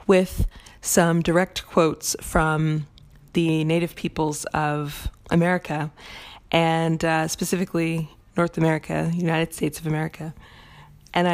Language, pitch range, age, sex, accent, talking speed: English, 155-180 Hz, 20-39, female, American, 105 wpm